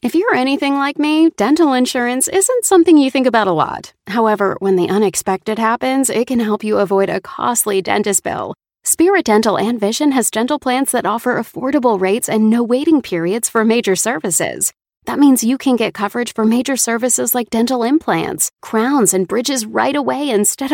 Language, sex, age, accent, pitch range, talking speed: English, female, 30-49, American, 210-275 Hz, 185 wpm